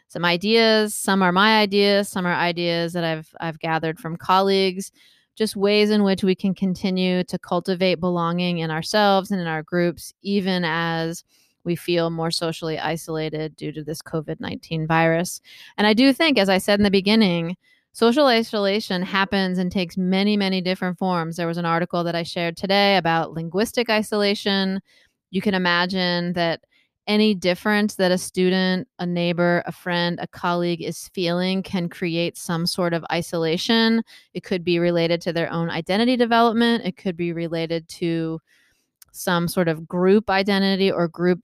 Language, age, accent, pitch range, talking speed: English, 20-39, American, 170-195 Hz, 170 wpm